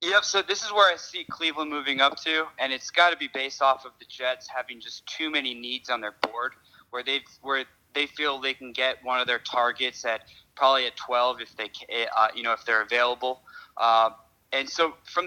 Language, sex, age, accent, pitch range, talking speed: English, male, 20-39, American, 125-160 Hz, 225 wpm